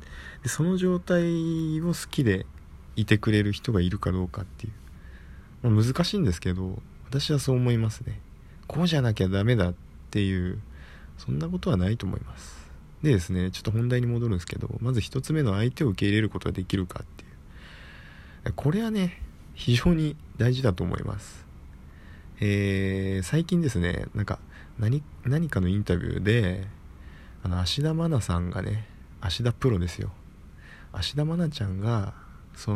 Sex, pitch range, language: male, 80-120 Hz, Japanese